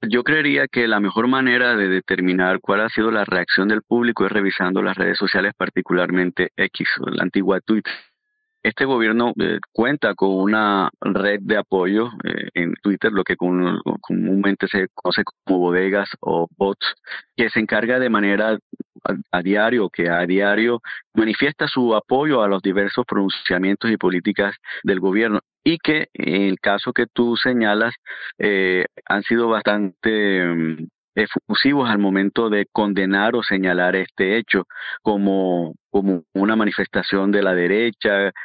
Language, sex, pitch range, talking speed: Spanish, male, 95-110 Hz, 155 wpm